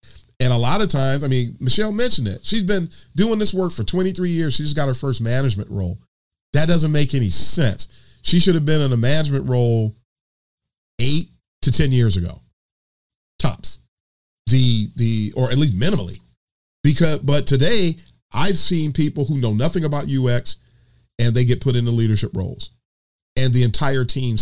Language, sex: English, male